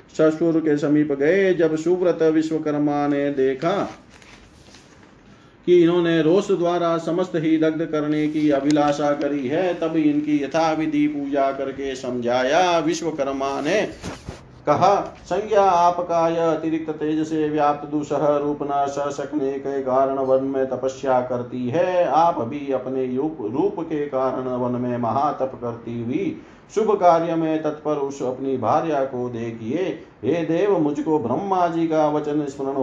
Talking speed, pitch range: 125 wpm, 135-165 Hz